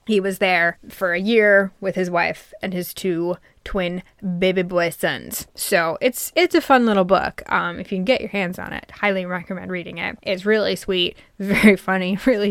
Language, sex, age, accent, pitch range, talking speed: English, female, 20-39, American, 185-245 Hz, 200 wpm